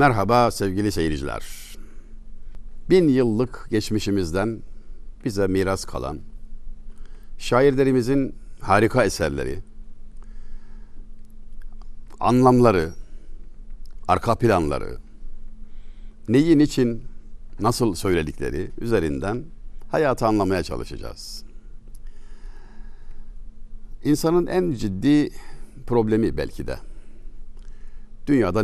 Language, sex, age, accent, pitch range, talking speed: Turkish, male, 60-79, native, 90-115 Hz, 65 wpm